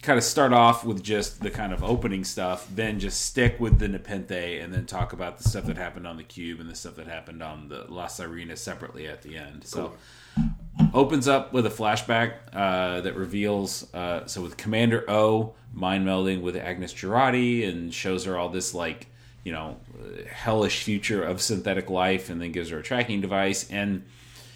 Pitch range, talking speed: 95-120 Hz, 200 wpm